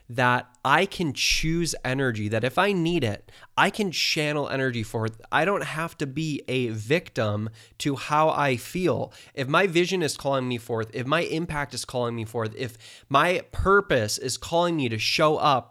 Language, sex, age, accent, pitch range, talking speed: English, male, 20-39, American, 125-160 Hz, 185 wpm